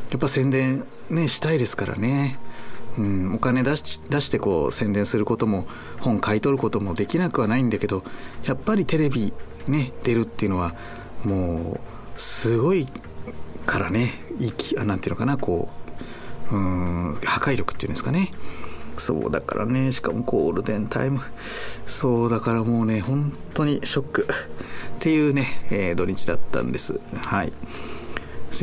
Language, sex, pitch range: Japanese, male, 100-125 Hz